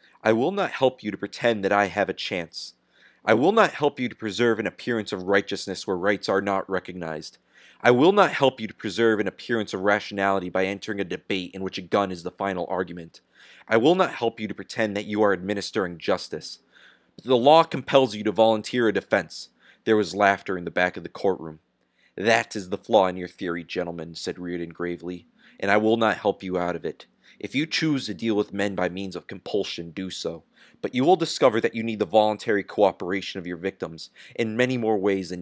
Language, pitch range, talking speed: English, 90-110 Hz, 220 wpm